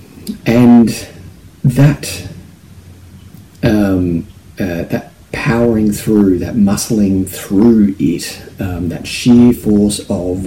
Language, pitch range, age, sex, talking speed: English, 90-115 Hz, 40-59, male, 90 wpm